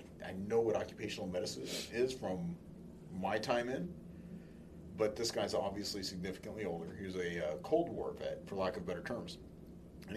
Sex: male